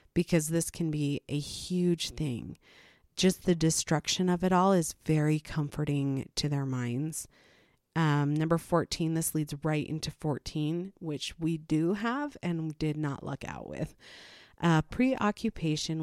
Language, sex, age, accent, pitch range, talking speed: English, female, 30-49, American, 145-170 Hz, 145 wpm